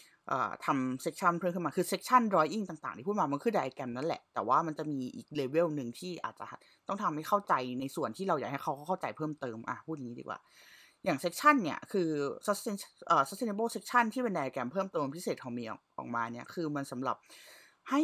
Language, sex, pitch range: Thai, female, 150-210 Hz